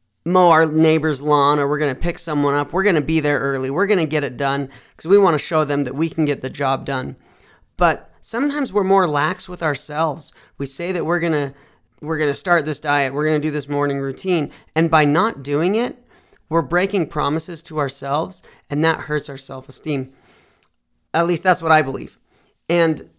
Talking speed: 215 wpm